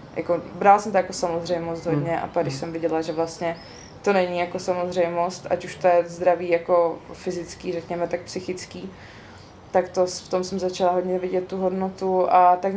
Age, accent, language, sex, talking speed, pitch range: 20-39, native, Czech, female, 190 wpm, 170-185 Hz